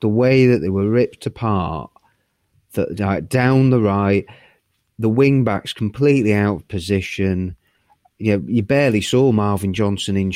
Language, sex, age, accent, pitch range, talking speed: English, male, 30-49, British, 95-115 Hz, 155 wpm